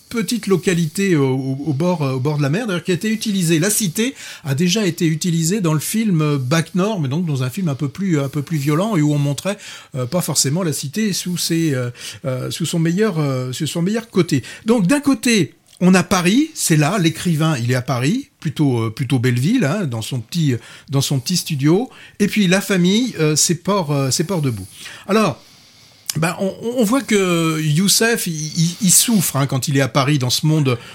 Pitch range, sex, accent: 140-195 Hz, male, French